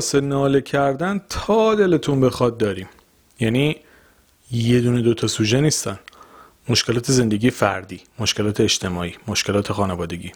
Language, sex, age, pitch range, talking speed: Persian, male, 40-59, 105-150 Hz, 115 wpm